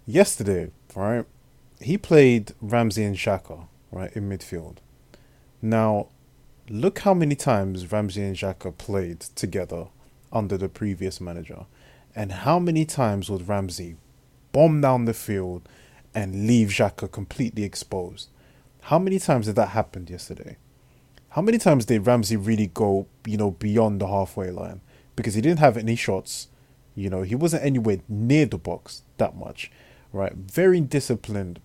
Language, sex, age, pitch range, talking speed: English, male, 20-39, 100-130 Hz, 150 wpm